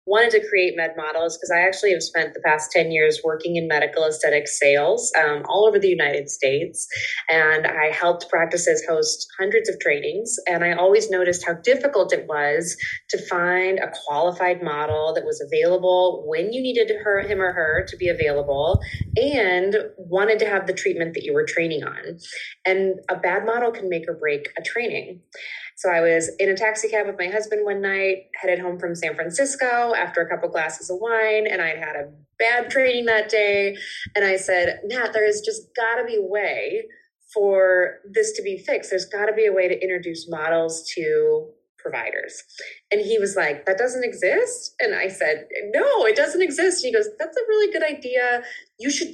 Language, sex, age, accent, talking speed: English, female, 20-39, American, 200 wpm